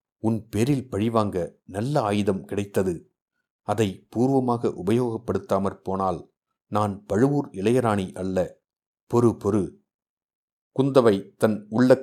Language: Tamil